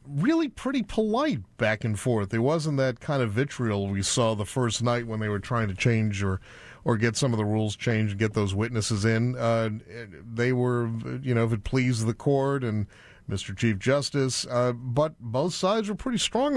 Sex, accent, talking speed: male, American, 205 wpm